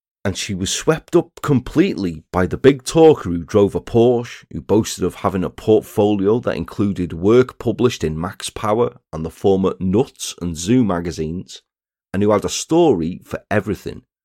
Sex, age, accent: male, 40-59, British